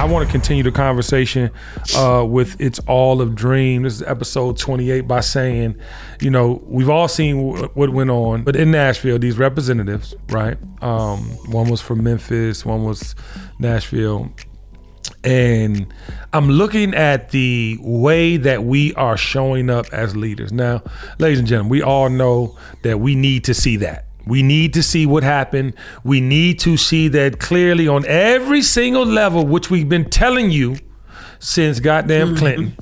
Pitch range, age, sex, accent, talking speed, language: 115-145 Hz, 40-59, male, American, 165 wpm, English